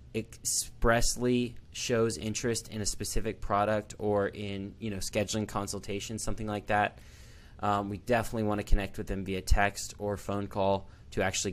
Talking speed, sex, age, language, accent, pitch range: 160 wpm, male, 20-39, English, American, 100-115 Hz